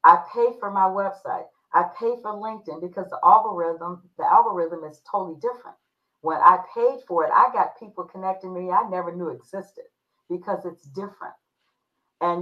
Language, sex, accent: English, female, American